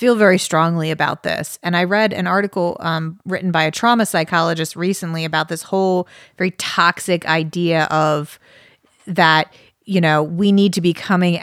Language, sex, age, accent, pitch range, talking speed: English, female, 30-49, American, 165-205 Hz, 170 wpm